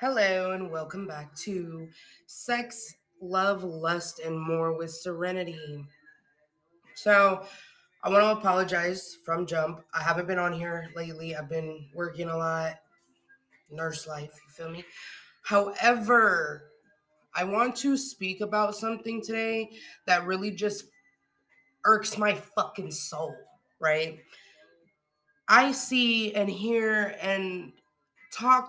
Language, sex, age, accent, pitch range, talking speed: English, female, 20-39, American, 175-230 Hz, 120 wpm